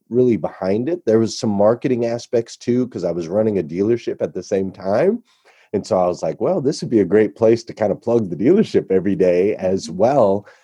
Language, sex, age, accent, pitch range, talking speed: English, male, 30-49, American, 95-115 Hz, 230 wpm